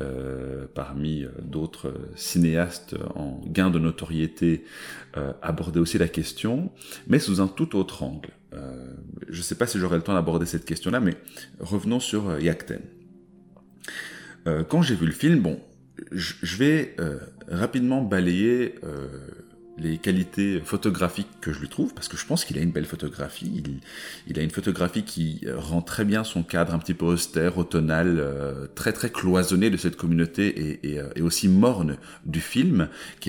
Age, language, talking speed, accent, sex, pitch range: 30-49, French, 175 wpm, French, male, 80-95 Hz